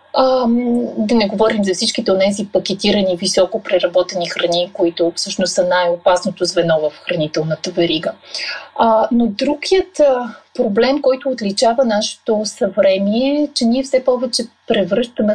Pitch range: 190-245 Hz